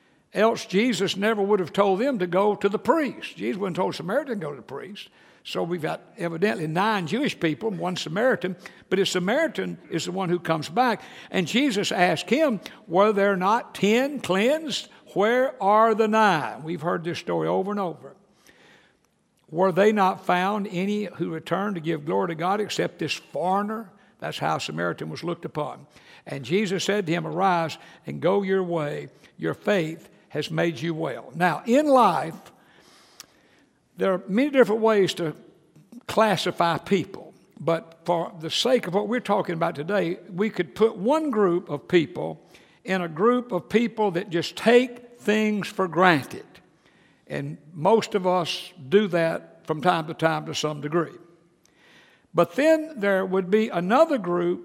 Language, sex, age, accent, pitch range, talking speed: English, male, 60-79, American, 170-215 Hz, 170 wpm